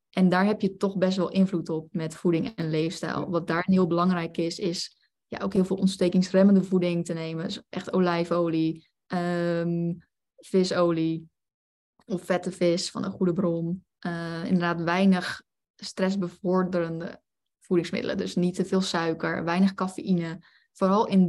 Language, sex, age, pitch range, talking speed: Dutch, female, 10-29, 170-195 Hz, 150 wpm